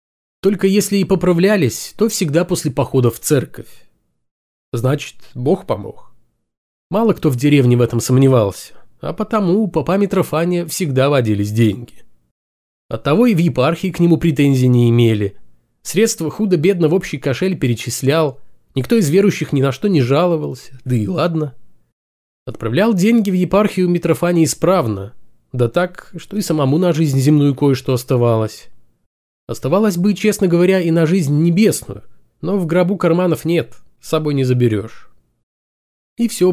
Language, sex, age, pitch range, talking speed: Russian, male, 20-39, 120-180 Hz, 145 wpm